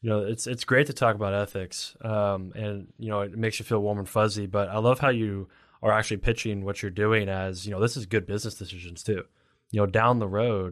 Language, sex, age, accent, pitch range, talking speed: English, male, 20-39, American, 95-110 Hz, 250 wpm